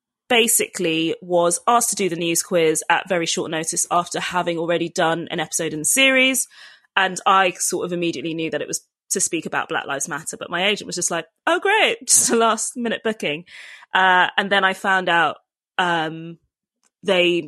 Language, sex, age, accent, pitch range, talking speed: English, female, 20-39, British, 160-190 Hz, 195 wpm